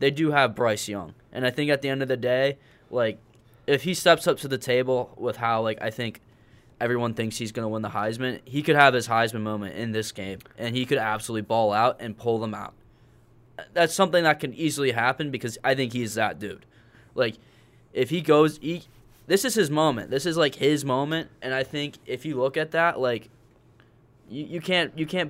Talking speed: 220 wpm